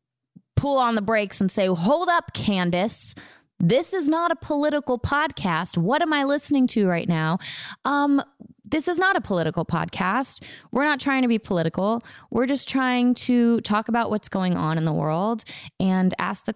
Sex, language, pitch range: female, English, 180-230 Hz